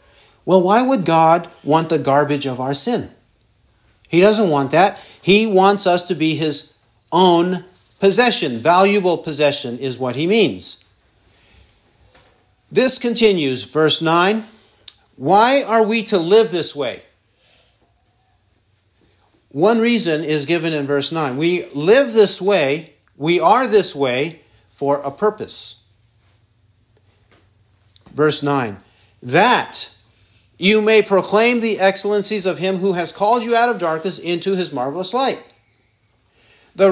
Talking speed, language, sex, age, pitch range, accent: 130 wpm, English, male, 50-69, 140-215 Hz, American